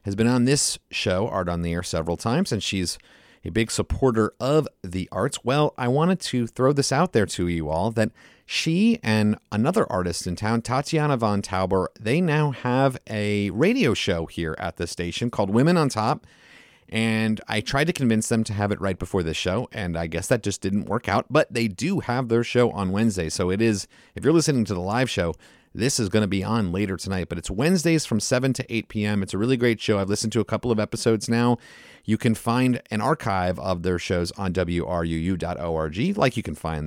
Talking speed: 220 wpm